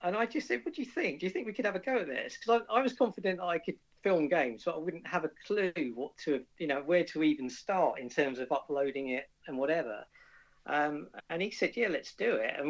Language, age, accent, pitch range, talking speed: English, 50-69, British, 130-170 Hz, 275 wpm